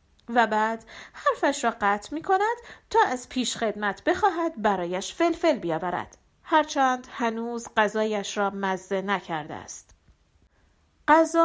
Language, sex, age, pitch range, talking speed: Persian, female, 40-59, 210-310 Hz, 110 wpm